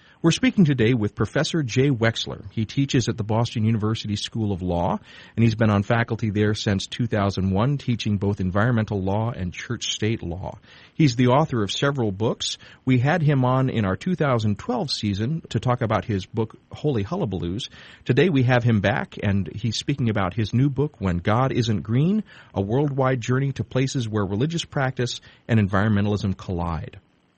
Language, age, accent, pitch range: English, 40-59, American, 100-125 Hz